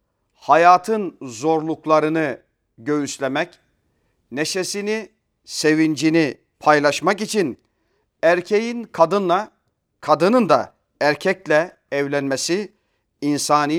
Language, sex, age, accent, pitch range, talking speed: Turkish, male, 40-59, native, 145-200 Hz, 60 wpm